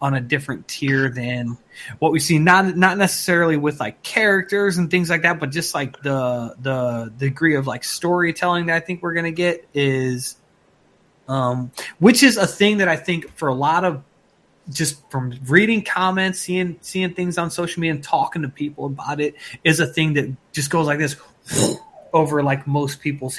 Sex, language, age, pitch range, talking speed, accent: male, English, 20-39, 135-175 Hz, 195 wpm, American